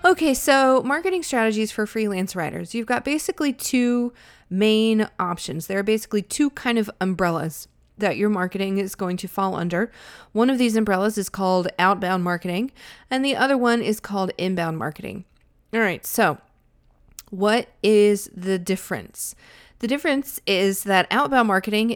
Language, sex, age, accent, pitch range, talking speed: English, female, 30-49, American, 185-225 Hz, 155 wpm